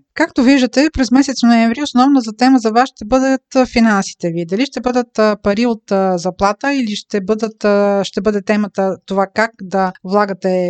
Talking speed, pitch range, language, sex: 165 wpm, 195-240 Hz, Bulgarian, female